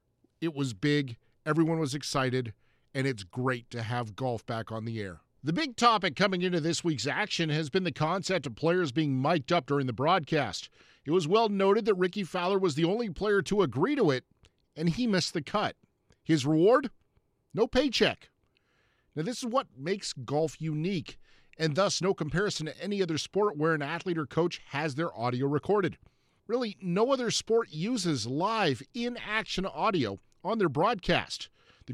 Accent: American